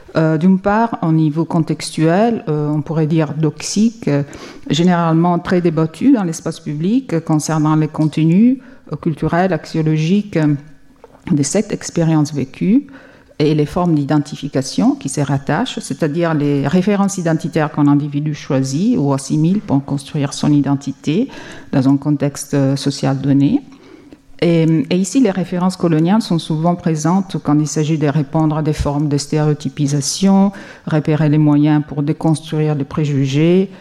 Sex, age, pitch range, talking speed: female, 50-69, 145-180 Hz, 150 wpm